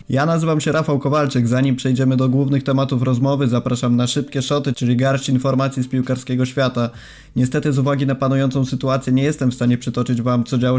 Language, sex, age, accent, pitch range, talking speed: Polish, male, 20-39, native, 125-140 Hz, 195 wpm